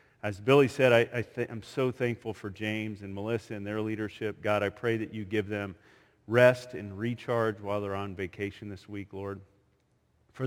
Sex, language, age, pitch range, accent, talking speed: male, English, 40-59, 105-120 Hz, American, 180 wpm